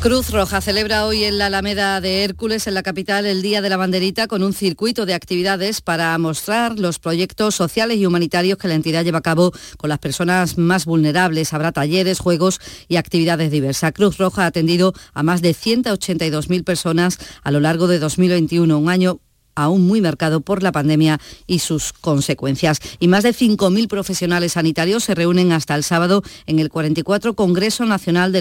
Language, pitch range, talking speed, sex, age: Spanish, 160-195 Hz, 185 wpm, female, 40-59